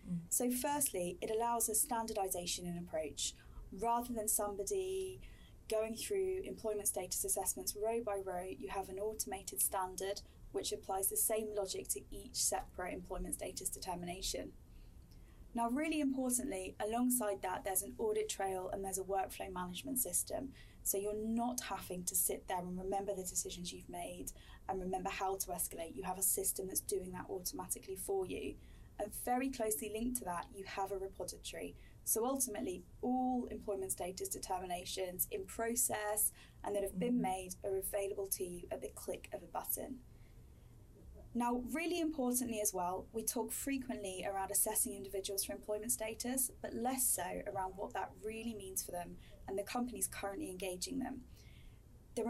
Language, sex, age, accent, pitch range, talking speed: English, female, 10-29, British, 190-240 Hz, 165 wpm